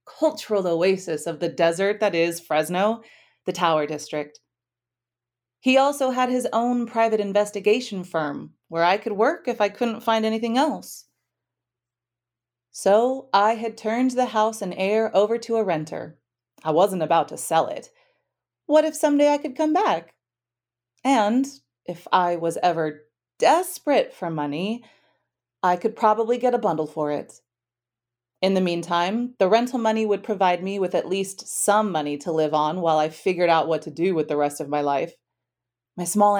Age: 30-49